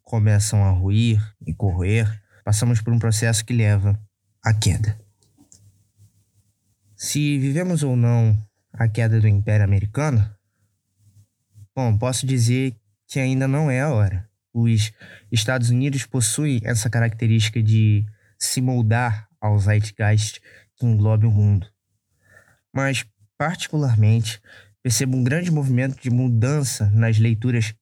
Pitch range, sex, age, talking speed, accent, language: 105-130 Hz, male, 20-39, 120 wpm, Brazilian, Portuguese